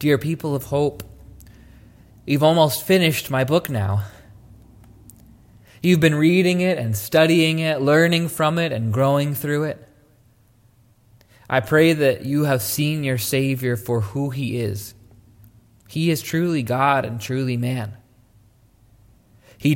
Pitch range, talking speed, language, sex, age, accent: 115-150 Hz, 135 wpm, English, male, 20-39, American